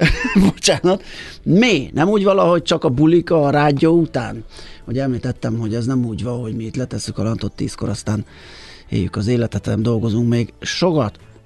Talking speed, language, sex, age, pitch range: 170 wpm, Hungarian, male, 30-49, 115-145 Hz